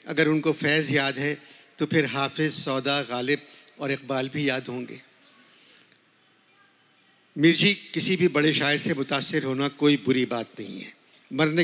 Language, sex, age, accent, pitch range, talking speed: Hindi, male, 50-69, native, 140-170 Hz, 150 wpm